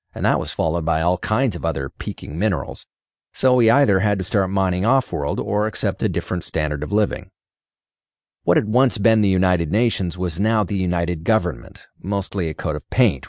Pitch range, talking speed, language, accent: 85-105 Hz, 195 wpm, English, American